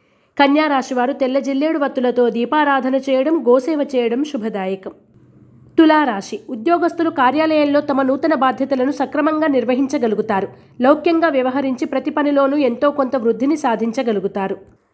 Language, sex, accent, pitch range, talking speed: Telugu, female, native, 245-295 Hz, 95 wpm